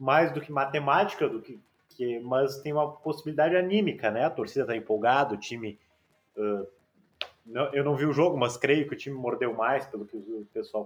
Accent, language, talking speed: Brazilian, Portuguese, 205 wpm